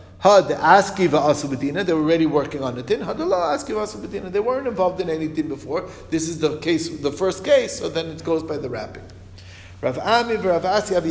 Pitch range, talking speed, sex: 135-195 Hz, 145 wpm, male